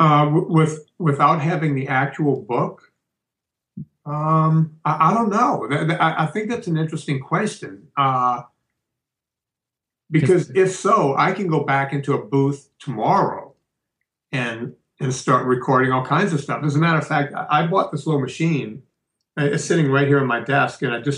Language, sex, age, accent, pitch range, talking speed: English, male, 50-69, American, 125-150 Hz, 165 wpm